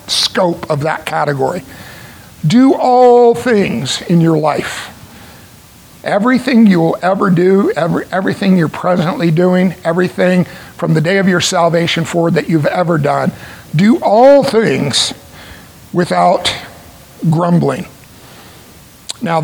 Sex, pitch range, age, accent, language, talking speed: male, 165-210 Hz, 50-69, American, English, 115 wpm